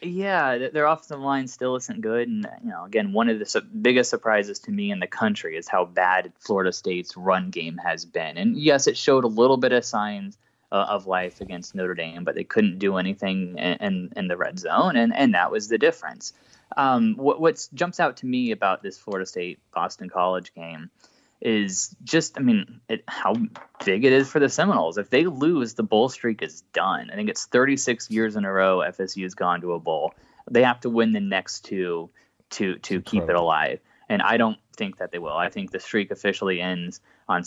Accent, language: American, English